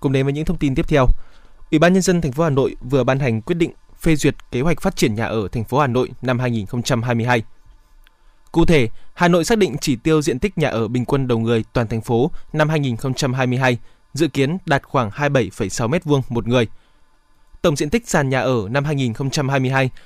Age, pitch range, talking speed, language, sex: 20-39, 125-160 Hz, 215 wpm, Vietnamese, male